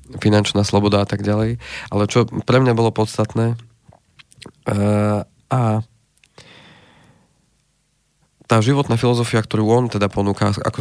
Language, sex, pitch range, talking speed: Slovak, male, 105-120 Hz, 115 wpm